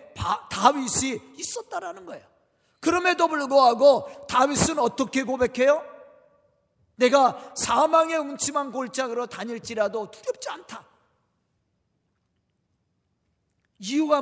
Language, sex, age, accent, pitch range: Korean, male, 40-59, native, 210-295 Hz